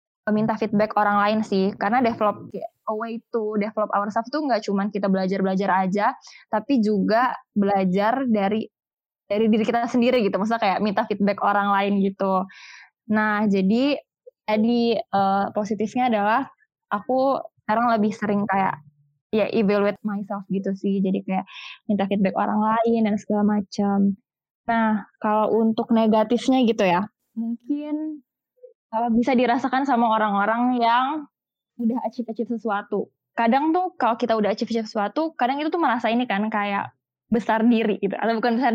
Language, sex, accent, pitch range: Indonesian, female, native, 205-240 Hz